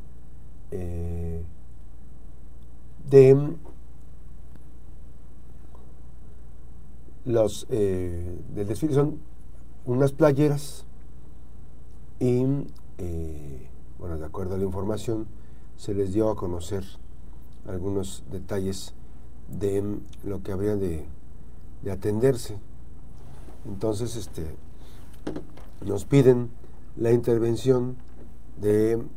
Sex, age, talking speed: male, 50-69, 80 wpm